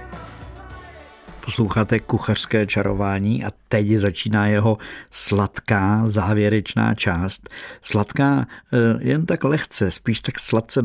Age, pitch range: 60-79, 90-110 Hz